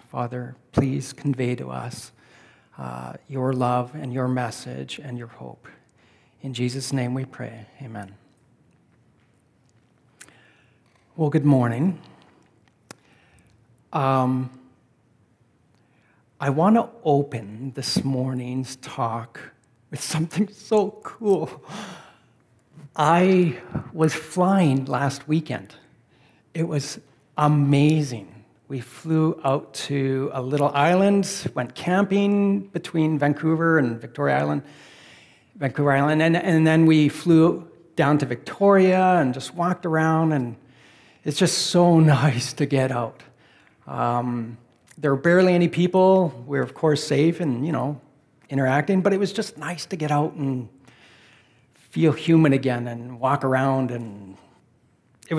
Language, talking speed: English, 120 wpm